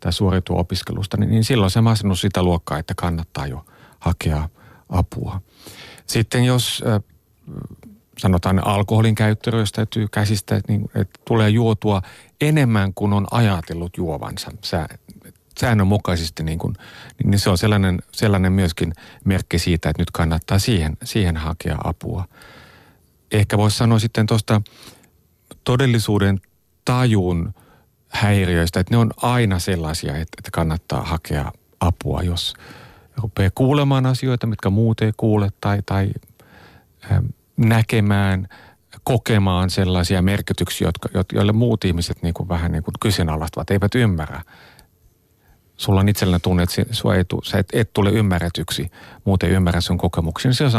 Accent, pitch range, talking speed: native, 90-110 Hz, 130 wpm